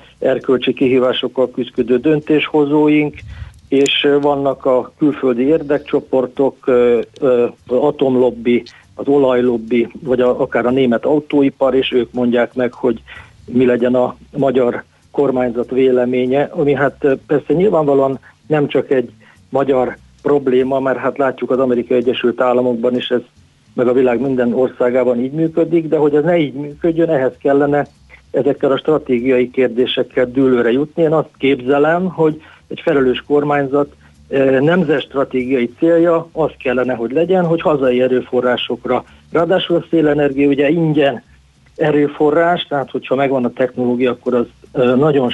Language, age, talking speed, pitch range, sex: Hungarian, 60-79, 130 wpm, 125-145 Hz, male